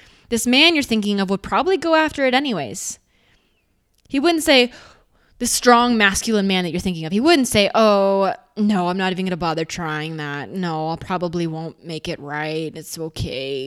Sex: female